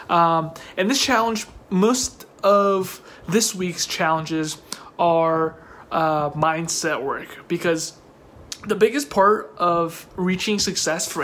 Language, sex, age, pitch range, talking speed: English, male, 20-39, 165-205 Hz, 115 wpm